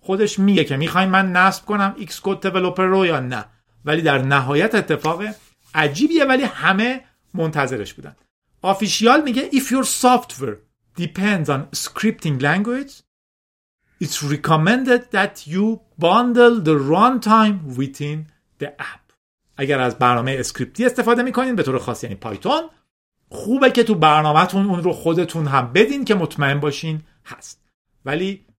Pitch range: 150-235 Hz